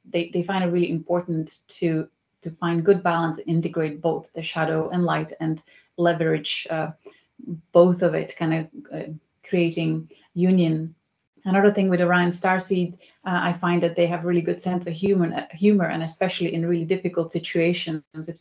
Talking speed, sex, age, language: 175 wpm, female, 30-49, English